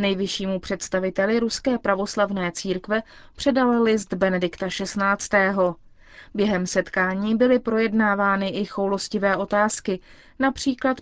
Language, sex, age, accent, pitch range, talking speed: Czech, female, 20-39, native, 190-240 Hz, 95 wpm